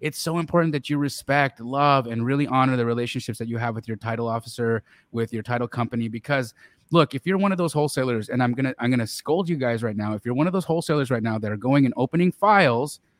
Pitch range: 120-160 Hz